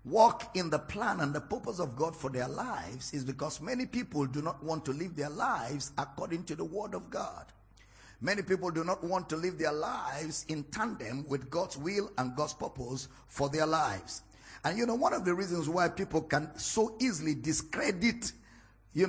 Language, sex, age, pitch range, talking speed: English, male, 50-69, 130-175 Hz, 200 wpm